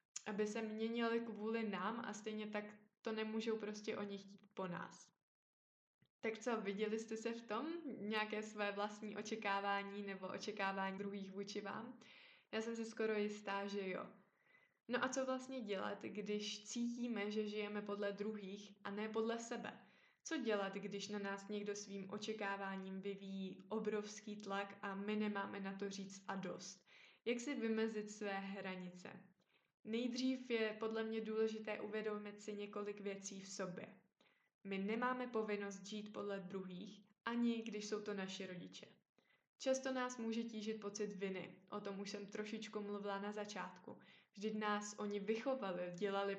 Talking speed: 155 wpm